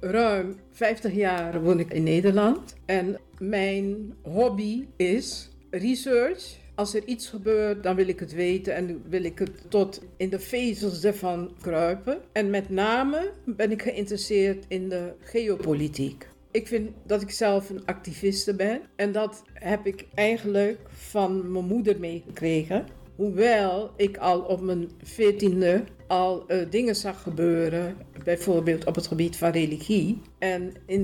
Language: Dutch